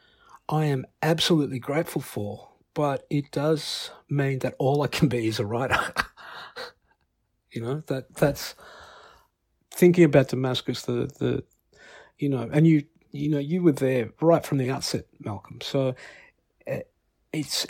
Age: 50-69